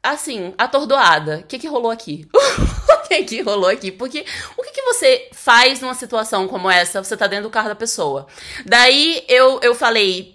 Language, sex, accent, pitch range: Portuguese, female, Brazilian, 190-265 Hz